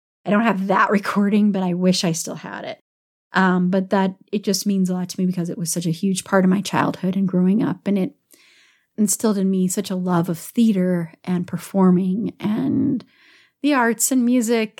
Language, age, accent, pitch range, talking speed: English, 30-49, American, 185-230 Hz, 210 wpm